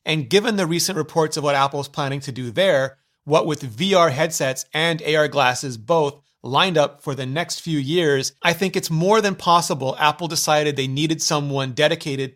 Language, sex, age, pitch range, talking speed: German, male, 30-49, 155-245 Hz, 190 wpm